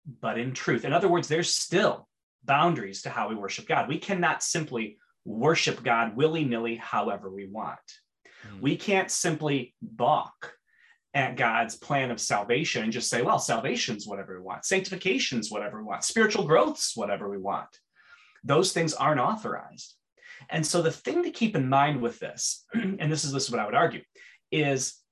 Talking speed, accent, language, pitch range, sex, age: 175 wpm, American, English, 125-175 Hz, male, 30-49